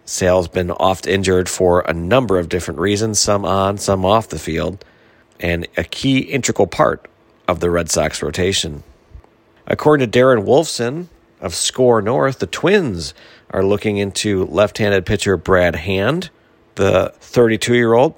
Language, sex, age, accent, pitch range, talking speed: English, male, 40-59, American, 90-125 Hz, 140 wpm